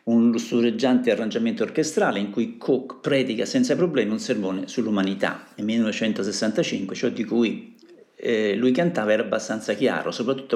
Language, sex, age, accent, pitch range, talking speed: Italian, male, 50-69, native, 105-175 Hz, 150 wpm